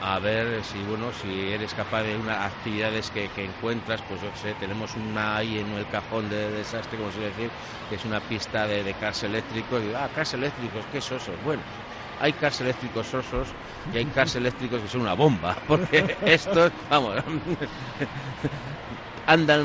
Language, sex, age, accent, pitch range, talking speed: Spanish, male, 60-79, Spanish, 105-130 Hz, 180 wpm